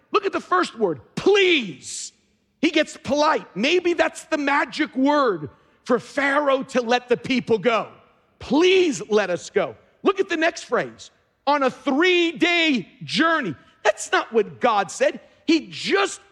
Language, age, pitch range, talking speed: English, 50-69, 255-335 Hz, 150 wpm